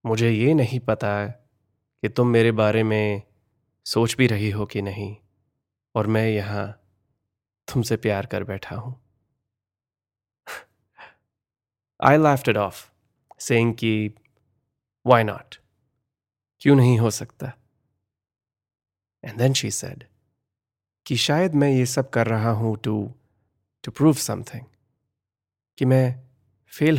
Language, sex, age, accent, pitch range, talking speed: Hindi, male, 20-39, native, 105-125 Hz, 120 wpm